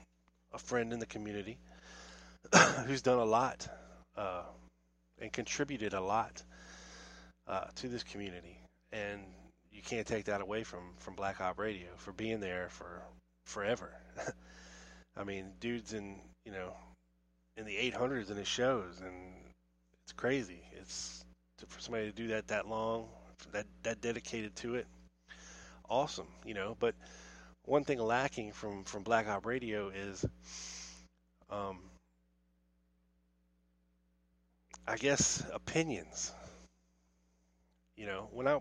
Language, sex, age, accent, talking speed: English, male, 20-39, American, 130 wpm